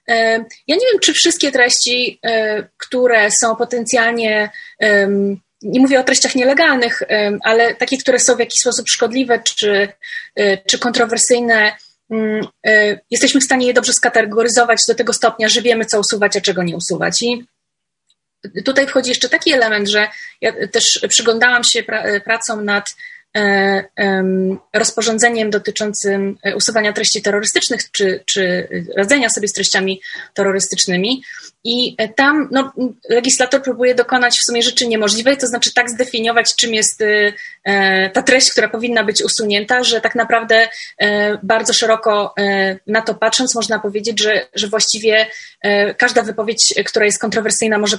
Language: Polish